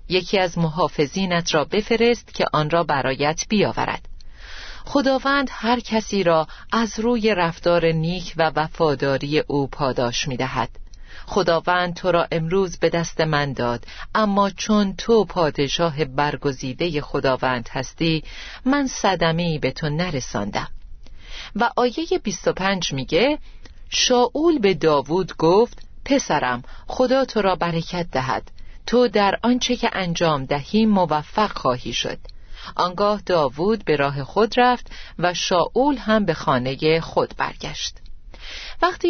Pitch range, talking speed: 150-215 Hz, 125 wpm